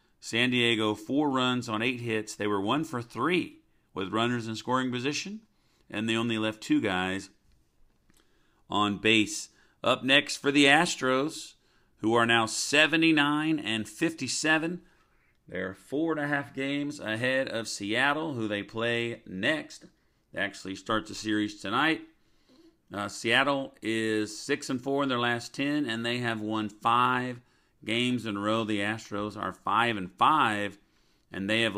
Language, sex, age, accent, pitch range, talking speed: English, male, 50-69, American, 110-140 Hz, 160 wpm